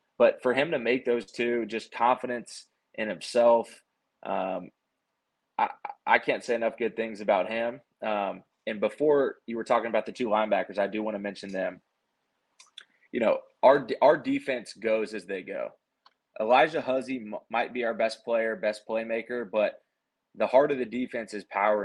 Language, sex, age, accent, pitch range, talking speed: English, male, 20-39, American, 110-125 Hz, 175 wpm